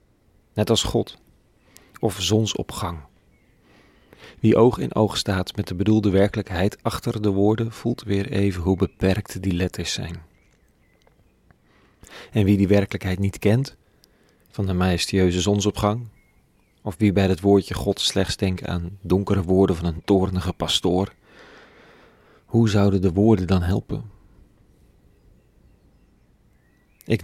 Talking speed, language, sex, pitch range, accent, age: 125 wpm, Dutch, male, 90-105 Hz, Dutch, 40-59